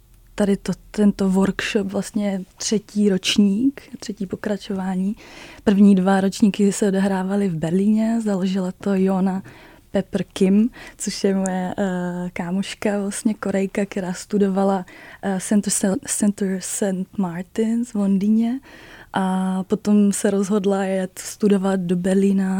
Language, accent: Czech, native